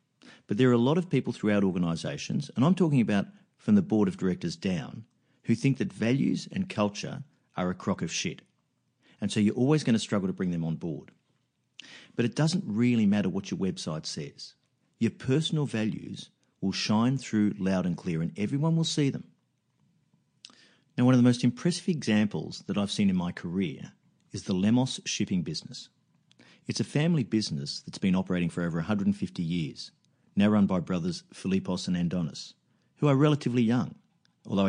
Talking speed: 185 wpm